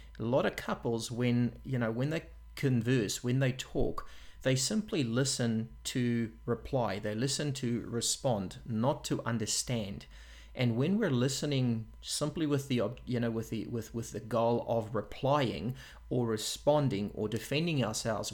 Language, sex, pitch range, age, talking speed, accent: English, male, 105-125 Hz, 30-49, 155 wpm, Australian